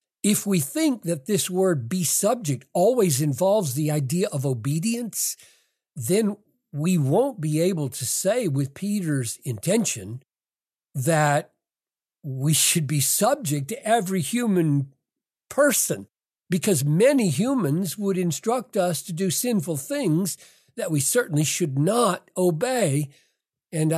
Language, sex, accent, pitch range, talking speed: English, male, American, 135-185 Hz, 125 wpm